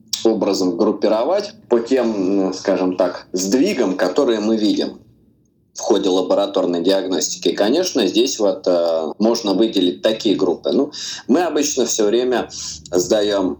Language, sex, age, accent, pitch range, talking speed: Russian, male, 20-39, native, 95-130 Hz, 120 wpm